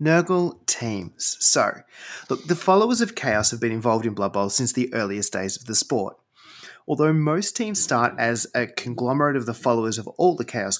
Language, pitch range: English, 110-155 Hz